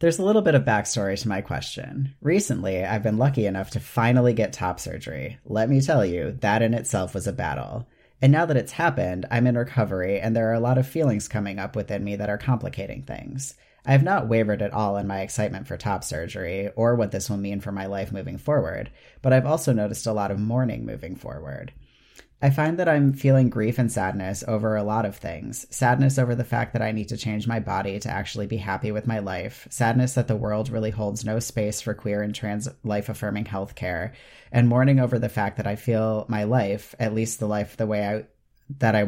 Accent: American